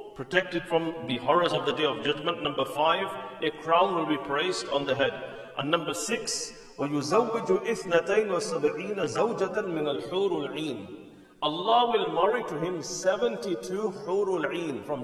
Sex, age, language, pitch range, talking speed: male, 50-69, English, 165-240 Hz, 115 wpm